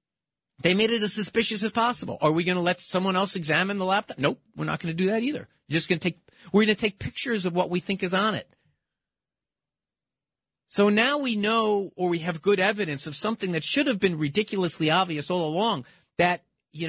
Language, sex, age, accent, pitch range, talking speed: English, male, 40-59, American, 135-200 Hz, 210 wpm